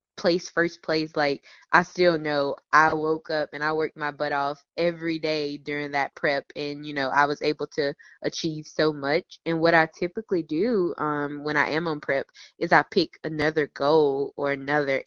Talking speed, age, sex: 195 wpm, 20-39, female